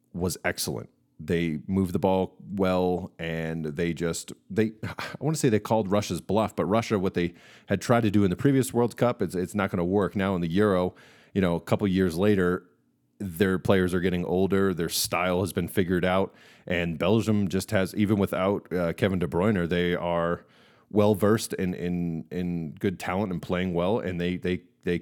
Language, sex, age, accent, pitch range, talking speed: English, male, 30-49, American, 85-105 Hz, 205 wpm